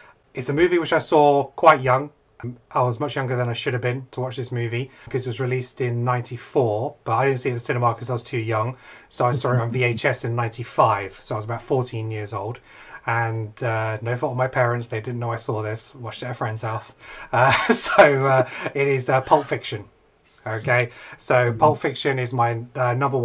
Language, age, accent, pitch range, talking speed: English, 30-49, British, 115-135 Hz, 235 wpm